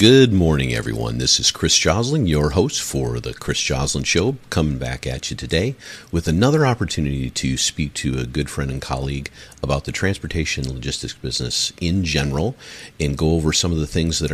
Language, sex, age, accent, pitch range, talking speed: English, male, 50-69, American, 70-100 Hz, 190 wpm